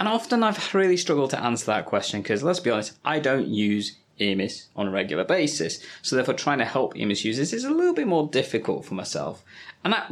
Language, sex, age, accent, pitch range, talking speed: English, male, 20-39, British, 120-185 Hz, 225 wpm